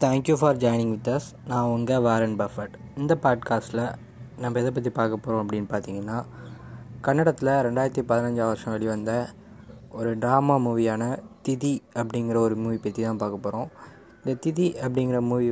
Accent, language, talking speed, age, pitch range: native, Tamil, 150 wpm, 20-39, 115-130 Hz